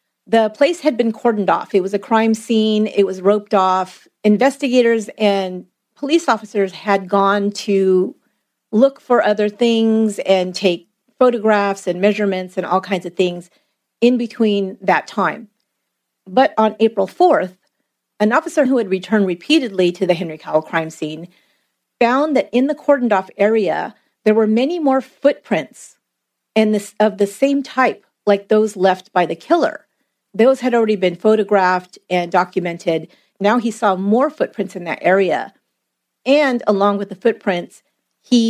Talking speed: 155 wpm